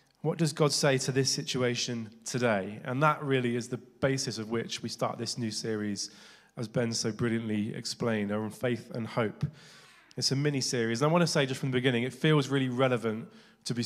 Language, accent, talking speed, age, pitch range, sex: English, British, 210 wpm, 20-39, 115-140 Hz, male